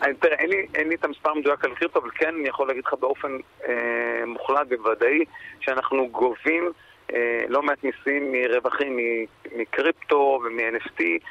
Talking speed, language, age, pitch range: 160 wpm, Hebrew, 40-59, 130-185 Hz